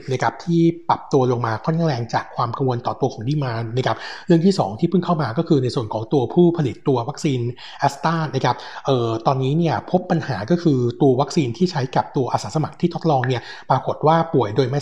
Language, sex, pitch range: Thai, male, 125-155 Hz